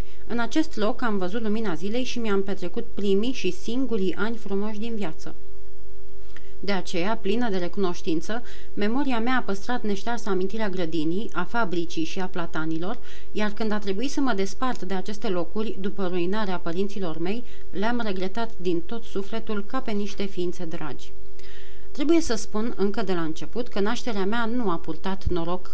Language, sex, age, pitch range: Romanian, female, 30-49, 185-235 Hz